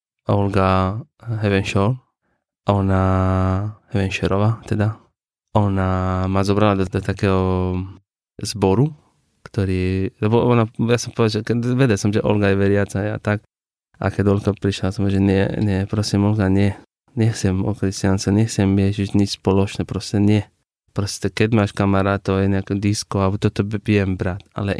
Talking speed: 145 wpm